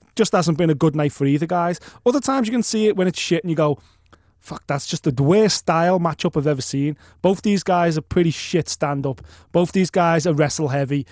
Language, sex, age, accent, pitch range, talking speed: English, male, 20-39, British, 155-240 Hz, 230 wpm